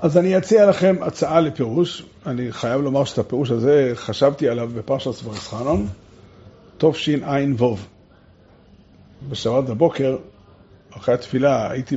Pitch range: 110-150 Hz